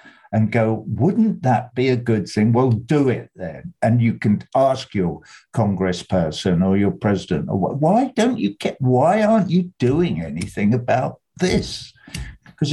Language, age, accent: English, 60-79, British